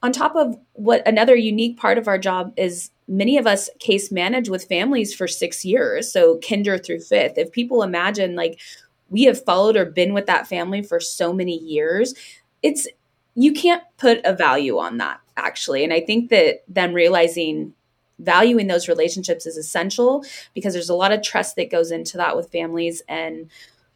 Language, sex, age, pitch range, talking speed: English, female, 20-39, 170-235 Hz, 185 wpm